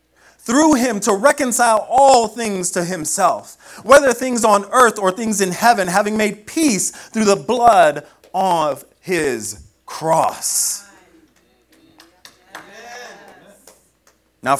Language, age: English, 30-49